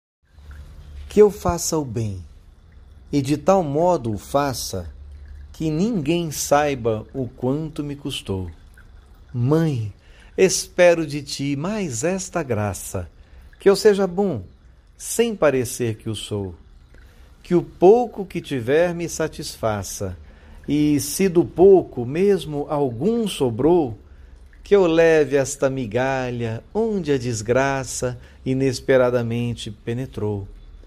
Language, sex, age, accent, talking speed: Portuguese, male, 60-79, Brazilian, 115 wpm